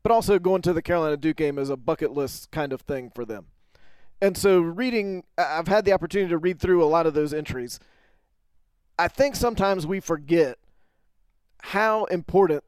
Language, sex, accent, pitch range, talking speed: English, male, American, 155-200 Hz, 180 wpm